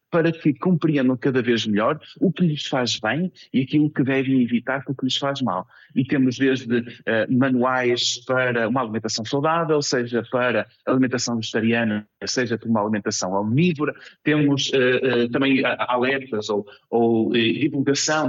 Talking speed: 155 wpm